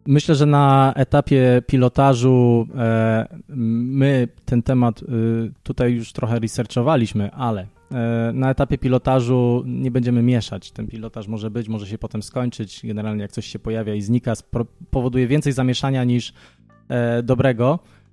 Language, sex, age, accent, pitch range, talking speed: Polish, male, 20-39, native, 115-130 Hz, 130 wpm